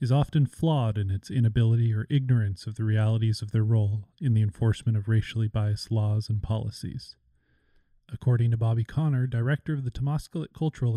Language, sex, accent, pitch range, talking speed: English, male, American, 110-135 Hz, 175 wpm